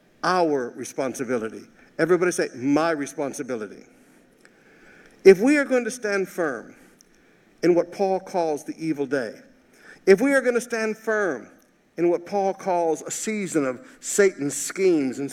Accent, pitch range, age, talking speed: American, 165-230 Hz, 50-69, 145 wpm